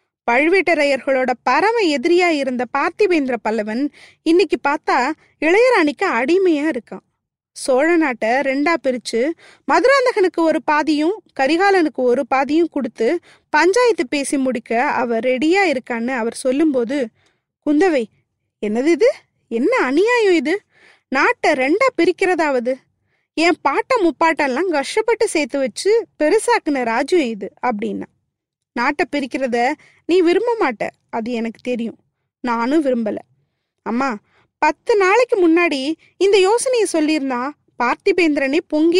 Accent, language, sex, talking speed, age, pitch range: native, Tamil, female, 95 wpm, 20-39, 260-360 Hz